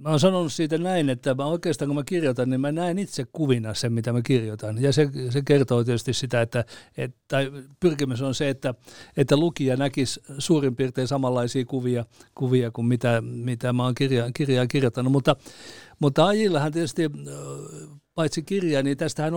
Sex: male